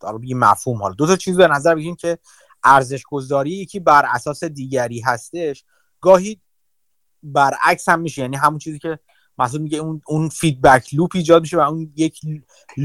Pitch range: 135-170 Hz